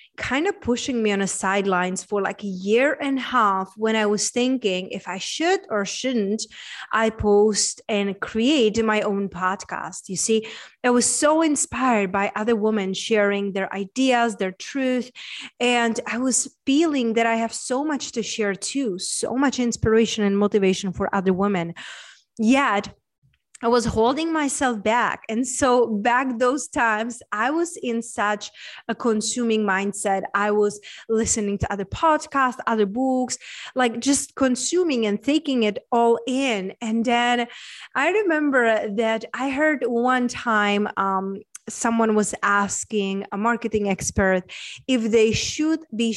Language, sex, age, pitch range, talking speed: English, female, 20-39, 205-255 Hz, 155 wpm